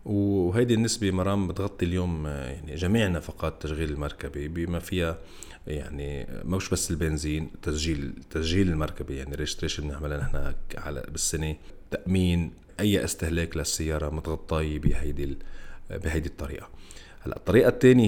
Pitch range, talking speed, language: 75-100 Hz, 115 wpm, Arabic